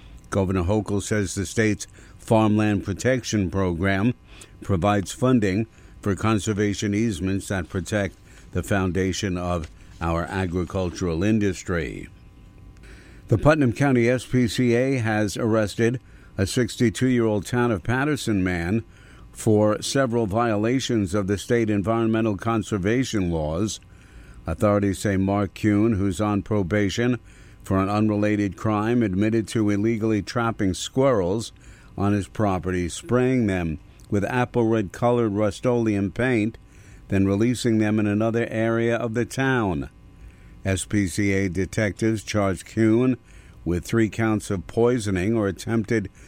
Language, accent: English, American